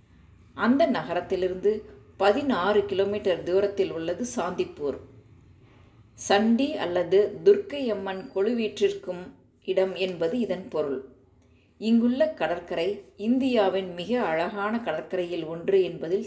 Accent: native